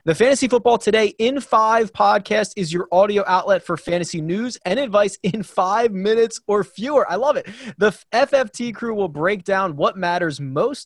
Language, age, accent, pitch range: English, 20-39, American, 165-225 Hz